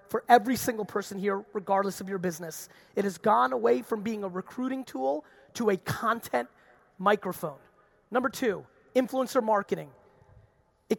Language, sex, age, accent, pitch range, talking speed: English, male, 30-49, American, 195-240 Hz, 145 wpm